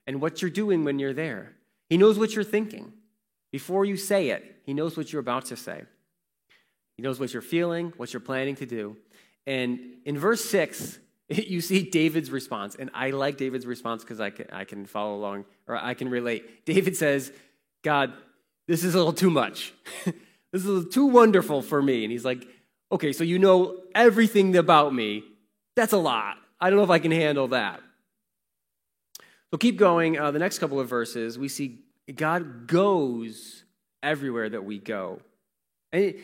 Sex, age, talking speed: male, 30-49, 185 wpm